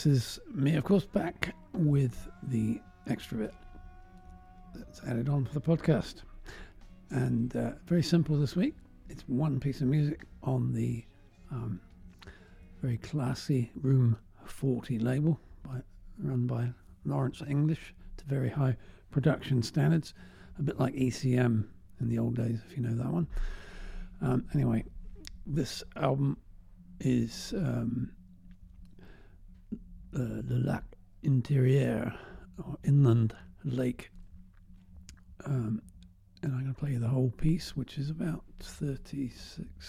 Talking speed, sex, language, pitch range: 130 wpm, male, English, 90-135 Hz